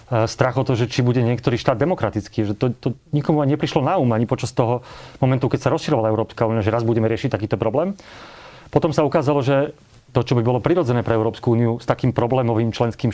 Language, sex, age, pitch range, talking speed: Slovak, male, 30-49, 115-150 Hz, 225 wpm